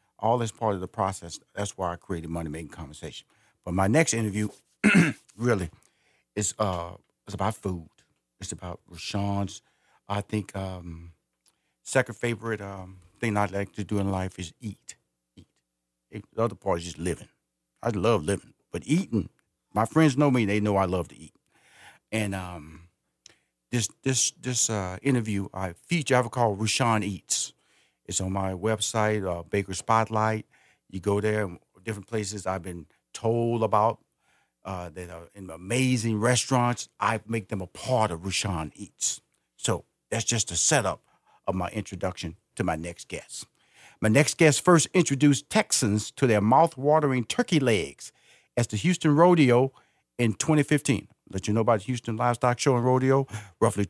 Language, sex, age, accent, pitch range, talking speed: English, male, 50-69, American, 95-120 Hz, 165 wpm